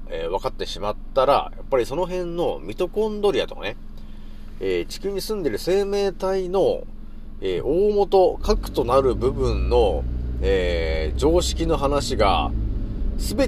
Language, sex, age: Japanese, male, 30-49